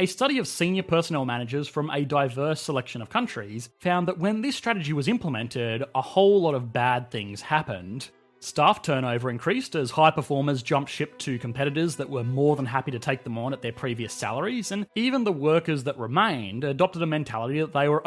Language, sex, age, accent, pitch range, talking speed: English, male, 30-49, Australian, 125-165 Hz, 205 wpm